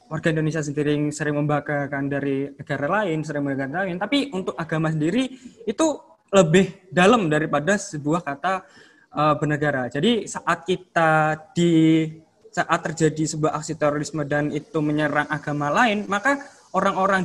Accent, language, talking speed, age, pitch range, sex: native, Indonesian, 135 wpm, 20-39, 155-205 Hz, male